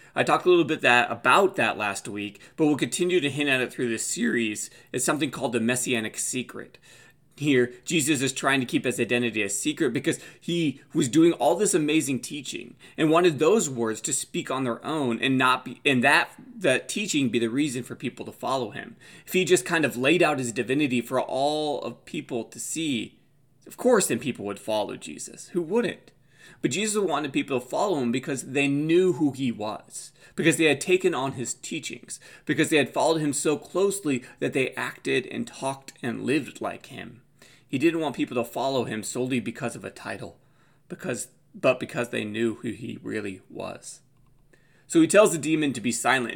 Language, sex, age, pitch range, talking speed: English, male, 20-39, 120-155 Hz, 205 wpm